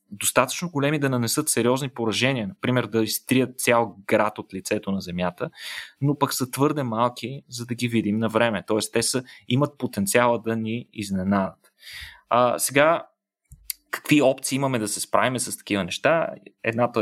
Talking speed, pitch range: 160 wpm, 110-140 Hz